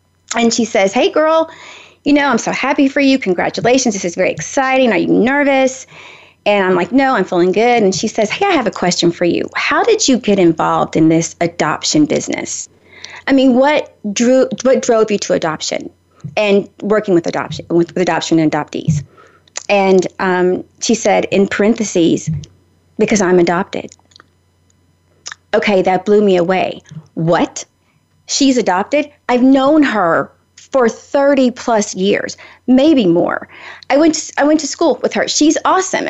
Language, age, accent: English, 30-49, American